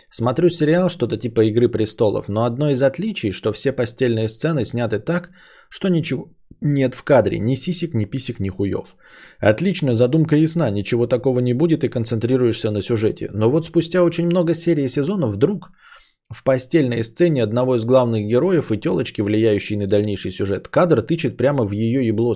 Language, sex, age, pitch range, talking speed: Bulgarian, male, 20-39, 115-155 Hz, 175 wpm